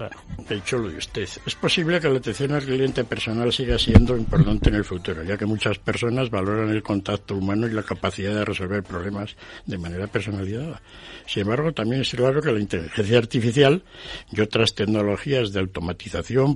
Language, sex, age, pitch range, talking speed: Spanish, male, 60-79, 100-135 Hz, 180 wpm